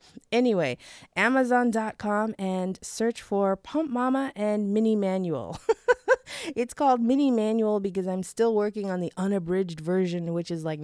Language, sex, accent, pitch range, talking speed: English, female, American, 190-290 Hz, 140 wpm